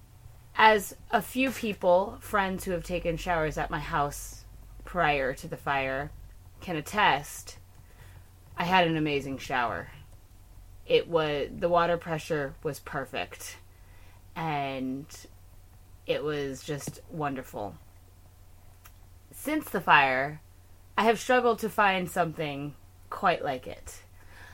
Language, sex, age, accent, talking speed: English, female, 20-39, American, 115 wpm